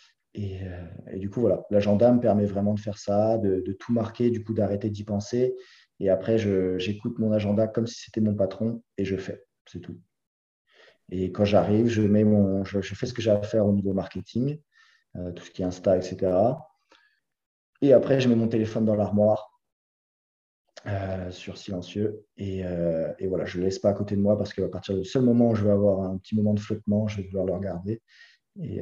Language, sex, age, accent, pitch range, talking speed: French, male, 20-39, French, 95-105 Hz, 220 wpm